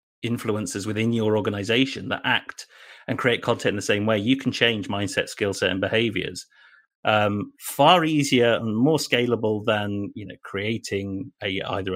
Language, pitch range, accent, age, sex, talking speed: English, 100-130 Hz, British, 30-49, male, 165 wpm